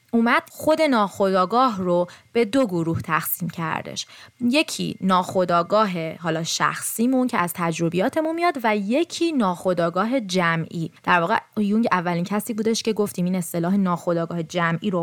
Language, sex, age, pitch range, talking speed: Persian, female, 20-39, 175-230 Hz, 135 wpm